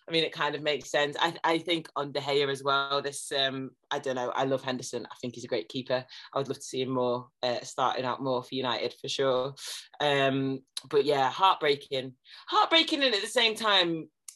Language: English